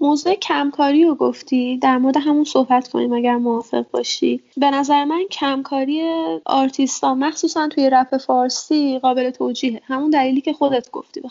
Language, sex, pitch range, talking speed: Persian, female, 250-300 Hz, 155 wpm